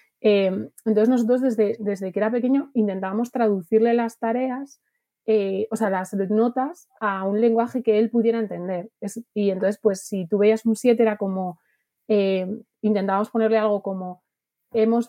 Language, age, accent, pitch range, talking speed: Spanish, 30-49, Spanish, 195-230 Hz, 160 wpm